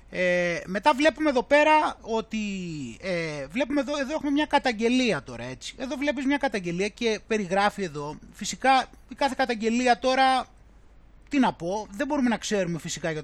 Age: 30-49